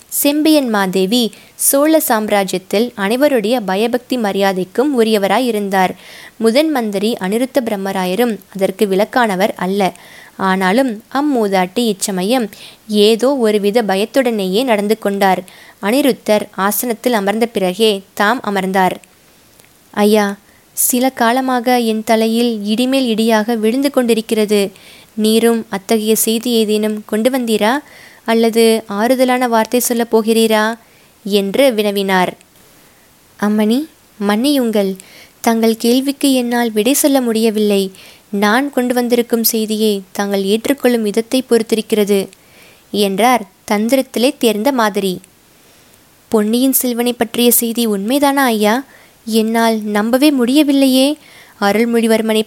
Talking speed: 95 wpm